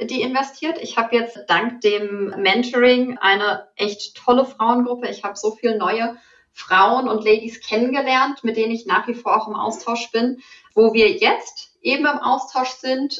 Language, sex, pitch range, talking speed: German, female, 215-265 Hz, 175 wpm